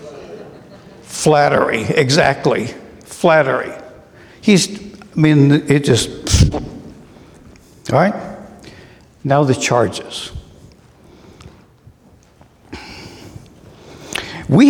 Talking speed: 60 wpm